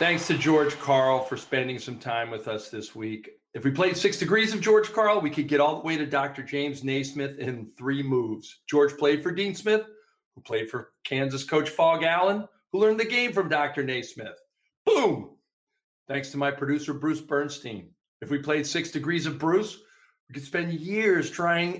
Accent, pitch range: American, 140-195 Hz